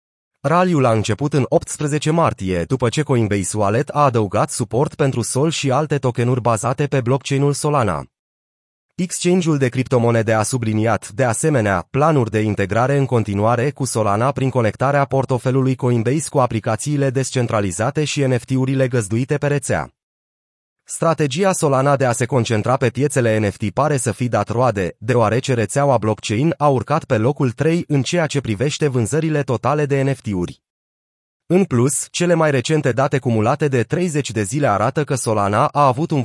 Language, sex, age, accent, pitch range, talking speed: Romanian, male, 30-49, native, 110-145 Hz, 155 wpm